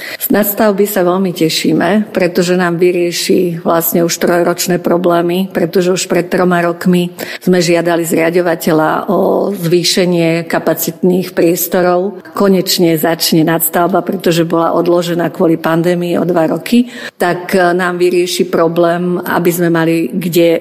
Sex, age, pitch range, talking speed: female, 50-69, 170-185 Hz, 125 wpm